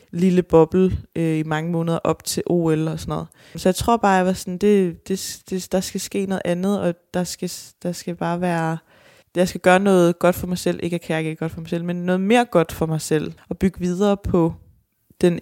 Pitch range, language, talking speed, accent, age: 165-195 Hz, English, 235 wpm, Danish, 20-39